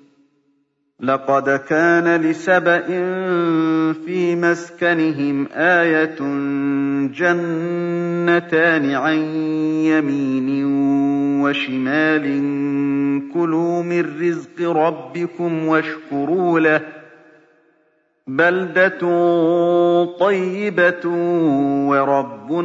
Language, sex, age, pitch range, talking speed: Arabic, male, 40-59, 140-175 Hz, 50 wpm